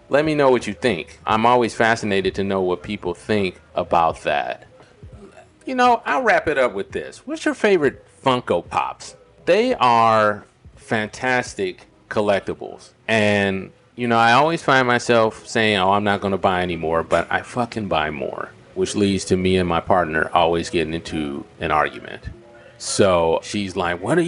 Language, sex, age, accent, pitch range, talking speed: English, male, 40-59, American, 90-120 Hz, 170 wpm